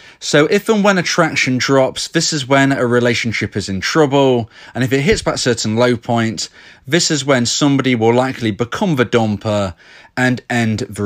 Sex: male